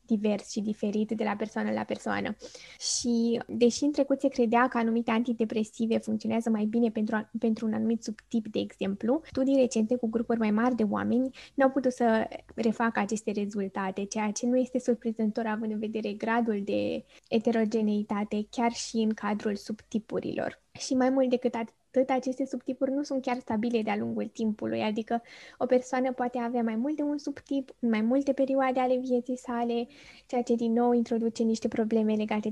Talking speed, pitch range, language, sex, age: 175 wpm, 220-250 Hz, Romanian, female, 20-39